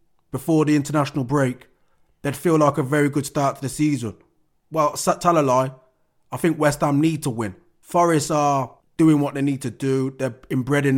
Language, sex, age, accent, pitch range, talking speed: English, male, 20-39, British, 120-145 Hz, 190 wpm